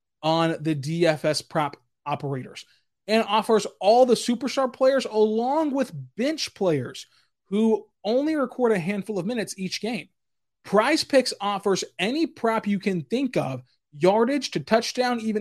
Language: English